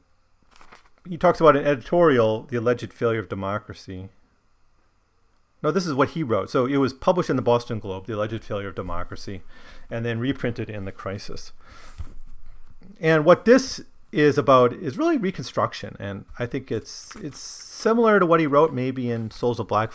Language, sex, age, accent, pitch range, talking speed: English, male, 40-59, American, 95-135 Hz, 175 wpm